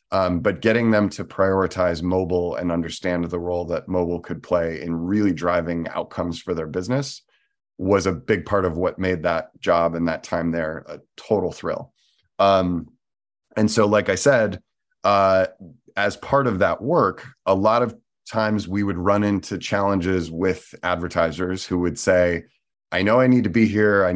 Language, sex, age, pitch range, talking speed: English, male, 30-49, 90-105 Hz, 180 wpm